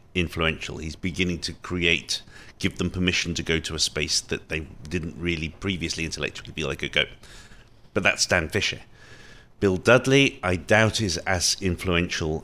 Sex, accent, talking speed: male, British, 165 wpm